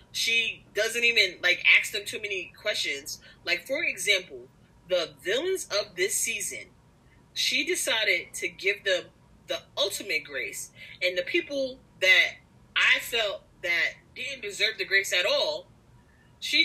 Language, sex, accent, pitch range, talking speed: English, female, American, 180-290 Hz, 140 wpm